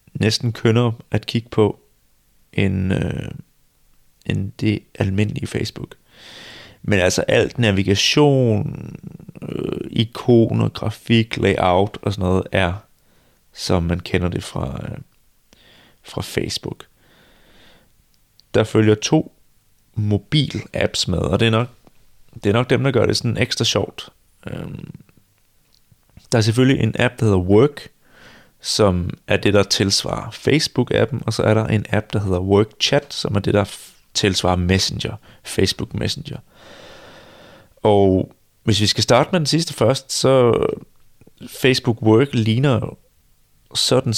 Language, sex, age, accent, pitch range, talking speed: Danish, male, 30-49, native, 100-120 Hz, 125 wpm